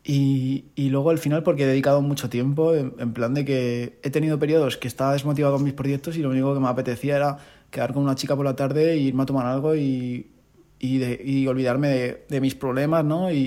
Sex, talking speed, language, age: male, 240 wpm, Spanish, 20-39